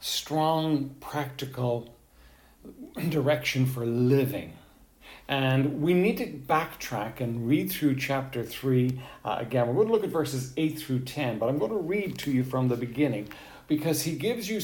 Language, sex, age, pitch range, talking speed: English, male, 60-79, 125-155 Hz, 160 wpm